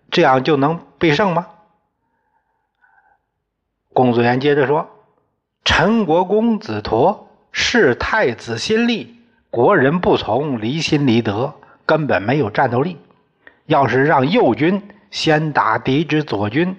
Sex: male